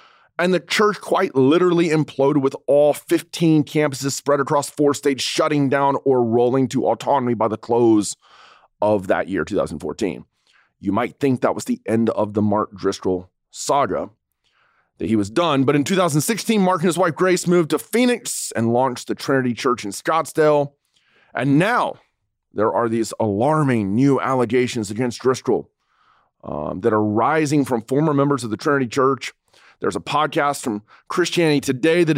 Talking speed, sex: 165 wpm, male